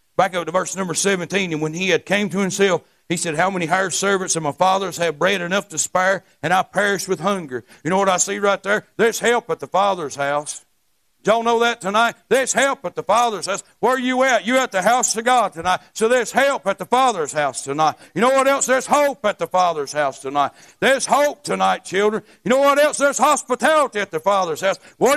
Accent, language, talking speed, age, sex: American, English, 240 wpm, 60-79, male